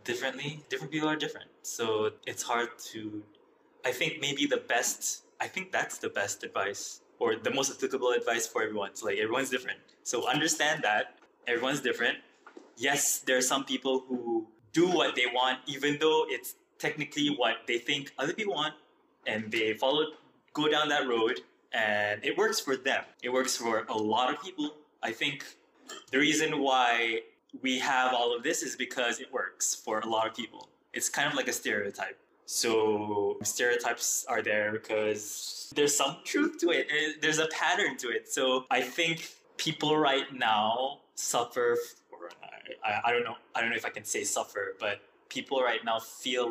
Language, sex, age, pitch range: English, male, 20-39, 115-170 Hz